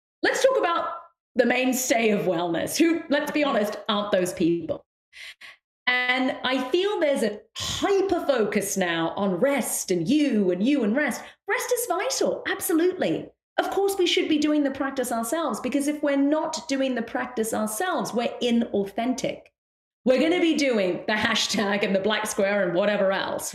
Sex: female